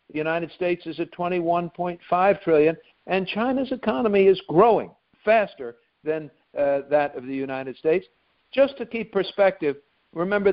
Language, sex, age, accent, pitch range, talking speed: English, male, 60-79, American, 150-195 Hz, 140 wpm